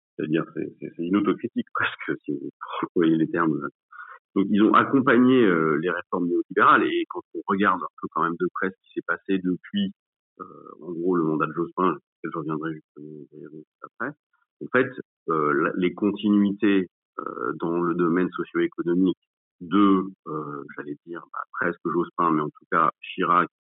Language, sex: French, male